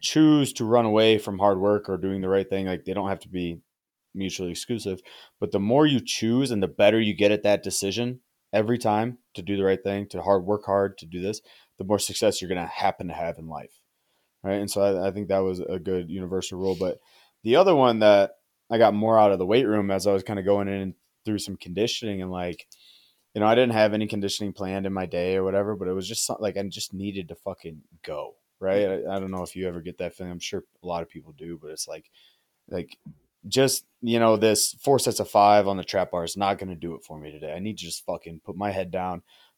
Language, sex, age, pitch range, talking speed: English, male, 20-39, 95-115 Hz, 260 wpm